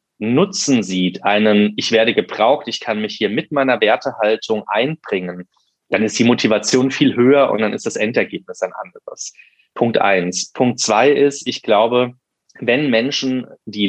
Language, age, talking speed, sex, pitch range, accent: German, 20-39, 160 wpm, male, 105-135 Hz, German